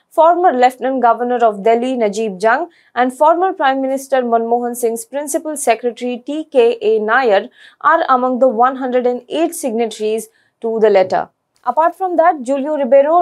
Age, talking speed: 20-39, 135 wpm